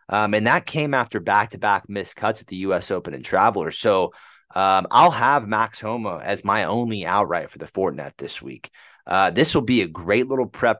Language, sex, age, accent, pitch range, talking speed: English, male, 30-49, American, 95-120 Hz, 205 wpm